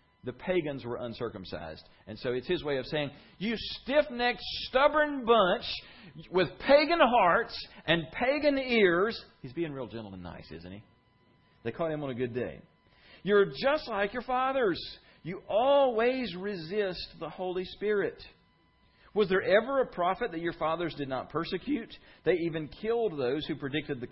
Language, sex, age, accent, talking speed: English, male, 40-59, American, 160 wpm